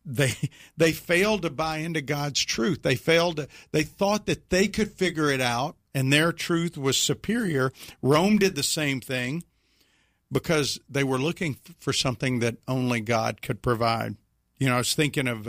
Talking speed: 180 wpm